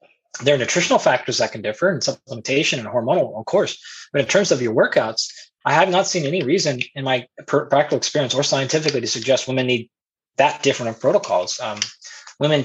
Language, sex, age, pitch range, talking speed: English, male, 20-39, 130-180 Hz, 195 wpm